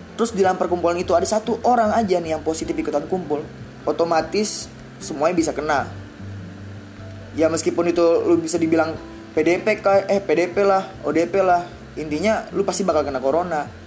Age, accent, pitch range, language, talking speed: 20-39, native, 130-170 Hz, Indonesian, 155 wpm